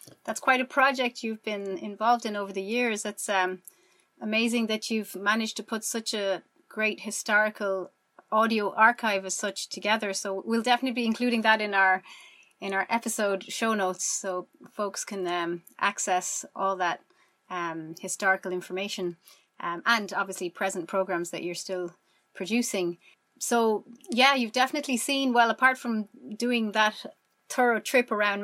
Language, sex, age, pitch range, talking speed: English, female, 30-49, 190-235 Hz, 150 wpm